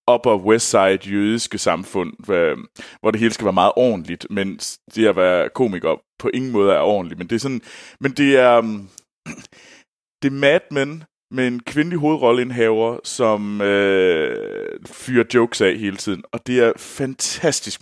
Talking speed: 160 wpm